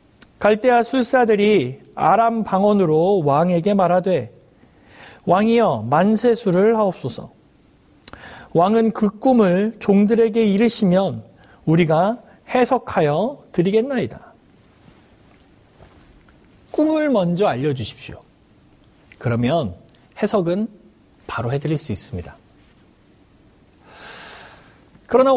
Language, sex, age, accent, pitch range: Korean, male, 40-59, native, 190-245 Hz